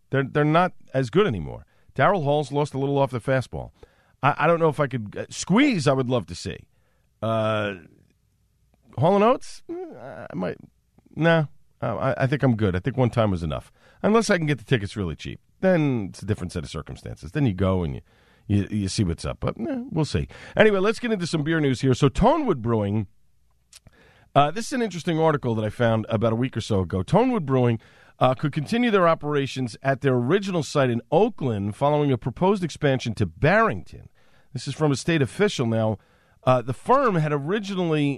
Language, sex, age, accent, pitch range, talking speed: English, male, 40-59, American, 105-155 Hz, 210 wpm